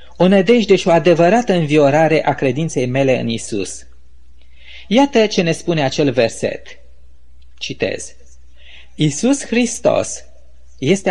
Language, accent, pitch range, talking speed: Romanian, native, 130-205 Hz, 115 wpm